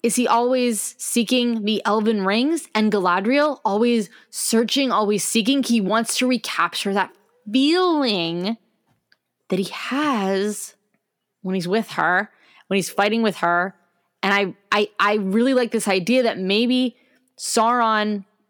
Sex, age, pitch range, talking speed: female, 10-29, 195-240 Hz, 135 wpm